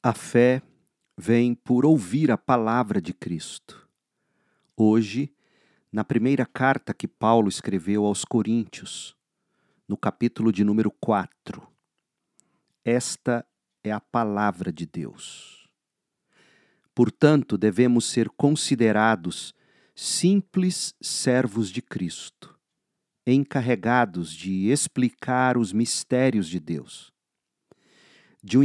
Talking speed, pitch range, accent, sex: 95 wpm, 105-140 Hz, Brazilian, male